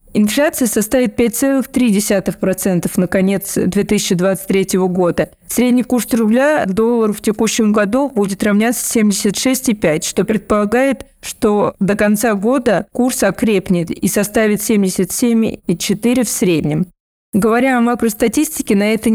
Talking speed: 110 wpm